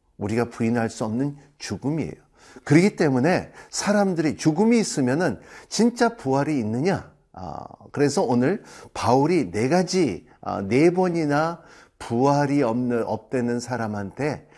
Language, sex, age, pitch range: Korean, male, 50-69, 120-165 Hz